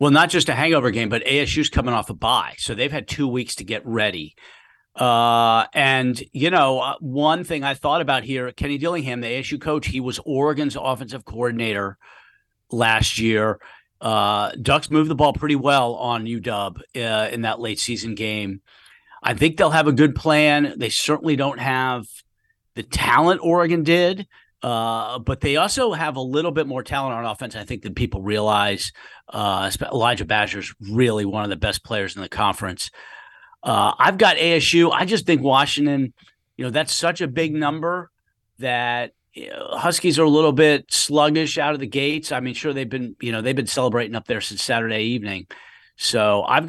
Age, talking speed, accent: 50-69, 190 wpm, American